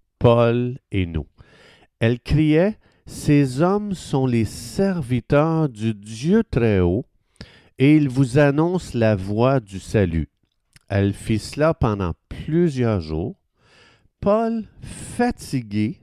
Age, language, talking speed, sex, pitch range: 50-69, French, 110 wpm, male, 100-145 Hz